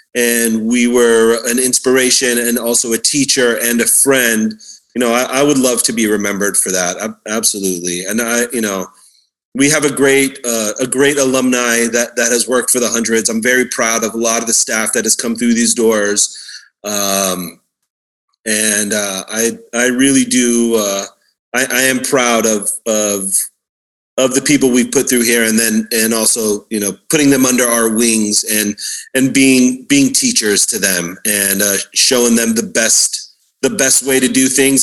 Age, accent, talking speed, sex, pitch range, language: 30-49, American, 190 wpm, male, 105-125 Hz, English